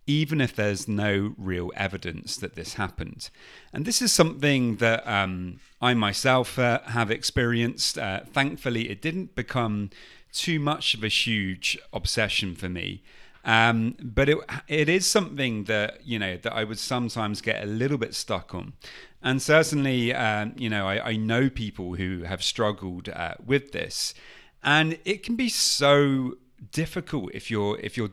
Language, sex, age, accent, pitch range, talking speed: English, male, 30-49, British, 100-125 Hz, 165 wpm